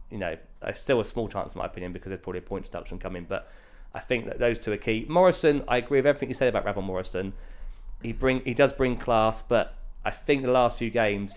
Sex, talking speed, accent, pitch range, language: male, 255 wpm, British, 95-110 Hz, English